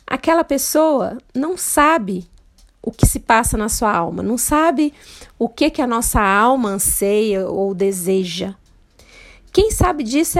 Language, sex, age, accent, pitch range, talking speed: Portuguese, female, 40-59, Brazilian, 230-300 Hz, 145 wpm